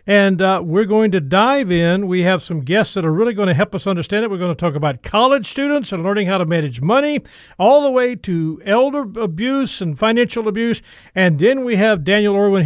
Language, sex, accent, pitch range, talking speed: English, male, American, 160-225 Hz, 230 wpm